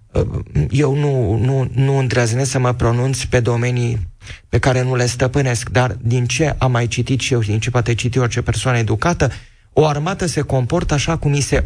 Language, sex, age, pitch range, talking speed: Romanian, male, 30-49, 115-130 Hz, 195 wpm